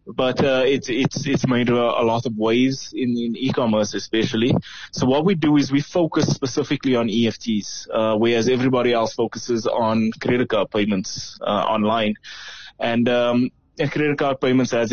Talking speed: 175 wpm